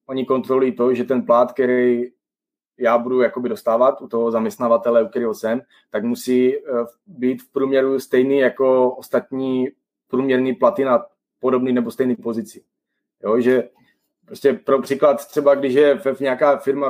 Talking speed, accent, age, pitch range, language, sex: 145 wpm, native, 20-39, 120-135 Hz, Czech, male